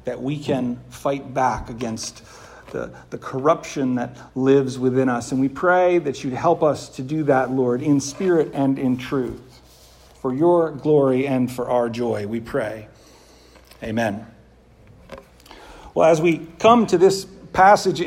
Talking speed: 155 wpm